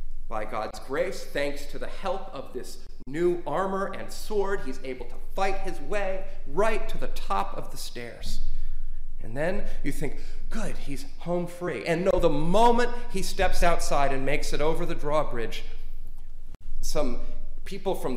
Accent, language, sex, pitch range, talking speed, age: American, English, male, 130-195 Hz, 165 wpm, 40-59